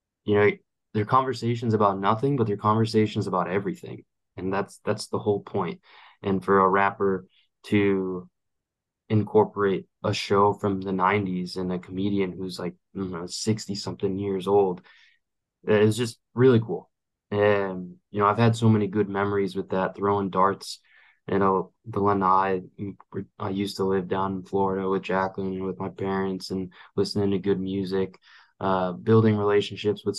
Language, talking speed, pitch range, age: English, 160 wpm, 95-105 Hz, 20-39